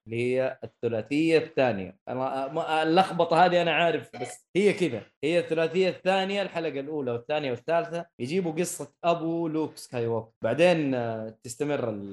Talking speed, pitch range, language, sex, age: 130 wpm, 120-165 Hz, Arabic, male, 20-39